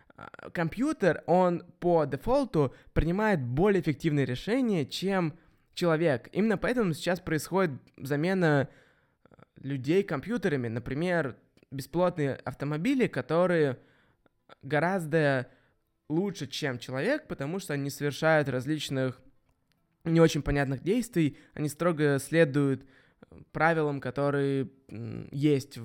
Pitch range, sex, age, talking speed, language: 135-175 Hz, male, 20-39, 95 wpm, Russian